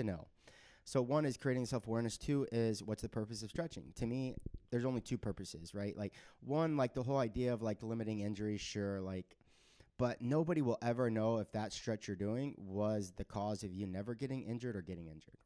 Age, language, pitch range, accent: 30-49, English, 105-140 Hz, American